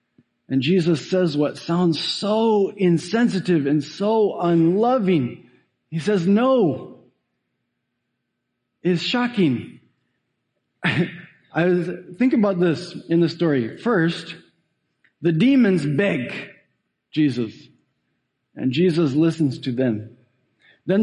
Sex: male